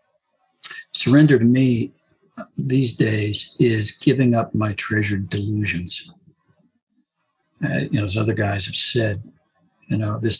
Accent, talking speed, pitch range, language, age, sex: American, 125 wpm, 105-140 Hz, English, 60-79, male